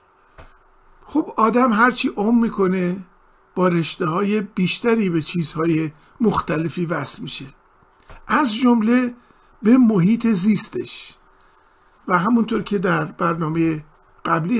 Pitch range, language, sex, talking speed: 175-230 Hz, Persian, male, 100 wpm